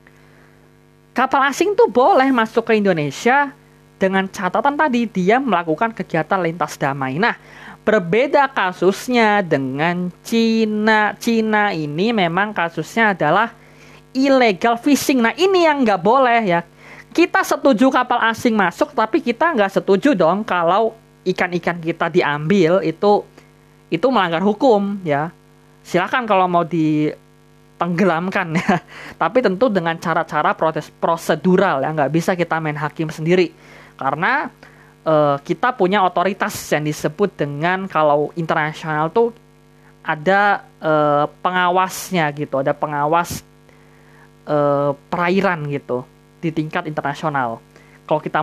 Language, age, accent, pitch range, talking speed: Indonesian, 20-39, native, 155-220 Hz, 120 wpm